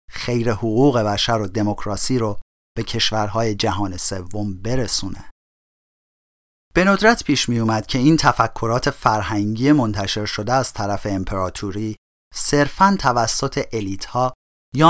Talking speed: 120 wpm